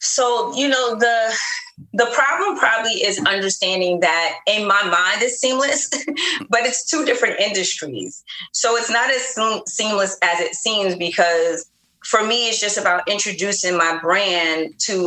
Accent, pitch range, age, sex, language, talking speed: American, 165-210 Hz, 30-49, female, English, 150 wpm